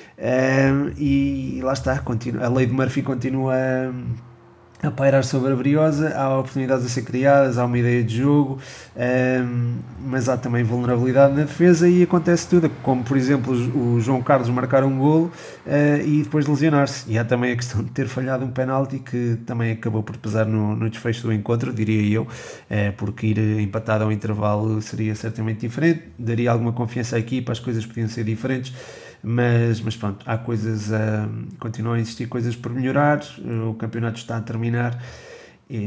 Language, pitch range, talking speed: Portuguese, 110-135 Hz, 170 wpm